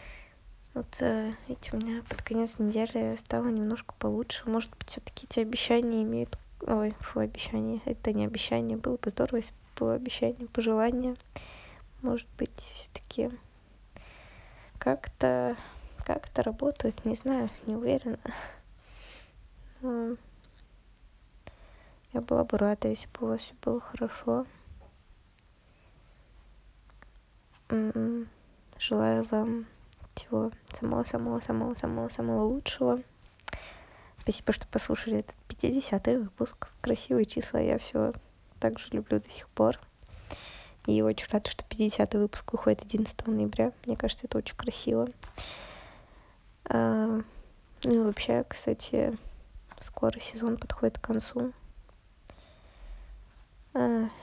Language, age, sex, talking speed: Russian, 20-39, female, 105 wpm